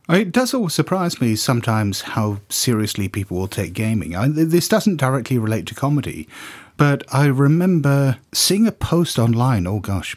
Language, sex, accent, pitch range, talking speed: English, male, British, 95-140 Hz, 160 wpm